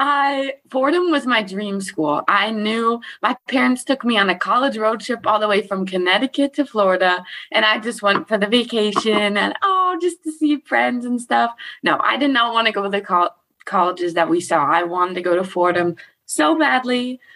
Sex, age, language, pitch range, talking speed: female, 20-39, English, 185-250 Hz, 205 wpm